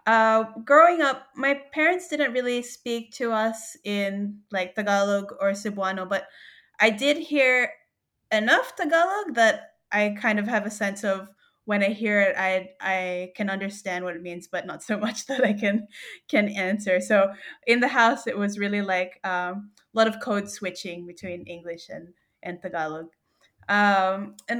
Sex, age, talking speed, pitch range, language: female, 20-39, 170 wpm, 200-275 Hz, English